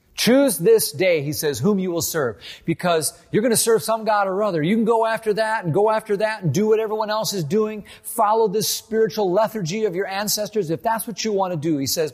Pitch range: 150-215 Hz